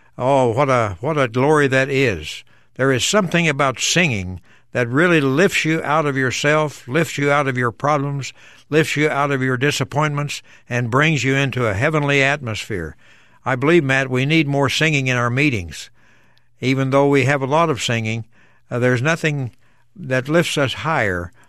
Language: English